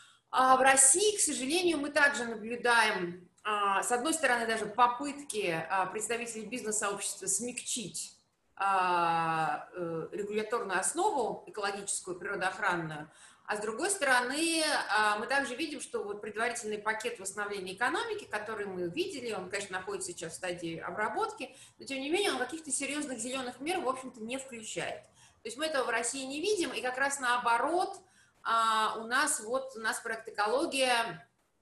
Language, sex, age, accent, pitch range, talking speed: Russian, female, 20-39, native, 200-275 Hz, 140 wpm